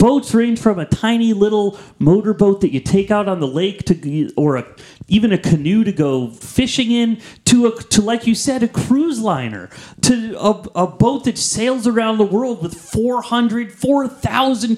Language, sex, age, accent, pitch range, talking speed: English, male, 30-49, American, 165-230 Hz, 185 wpm